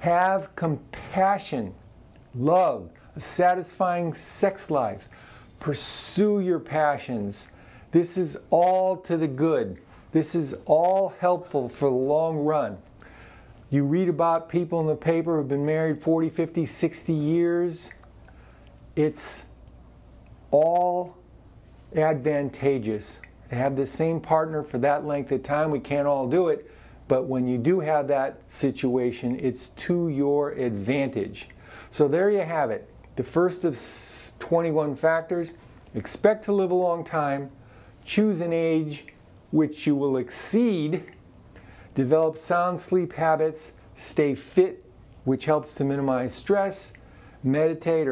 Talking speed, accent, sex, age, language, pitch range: 130 wpm, American, male, 50-69, English, 130-170 Hz